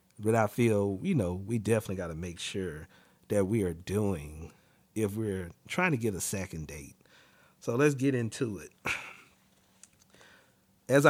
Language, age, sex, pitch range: English, 40-59, male, 110-160 Hz